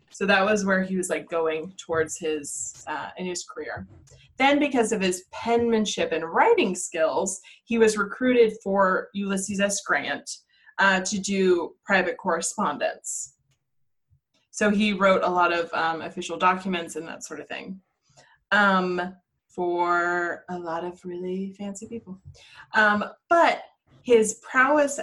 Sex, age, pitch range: female, 20-39, 175-210 Hz